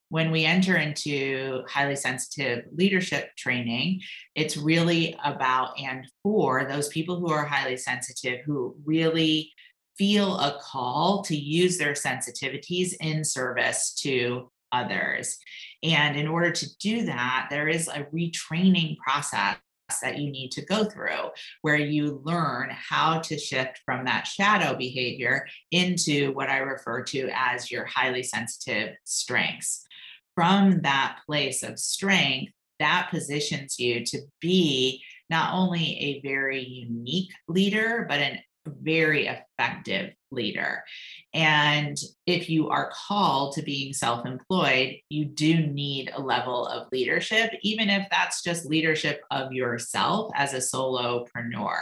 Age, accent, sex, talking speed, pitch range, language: 30-49, American, female, 135 wpm, 130-165 Hz, English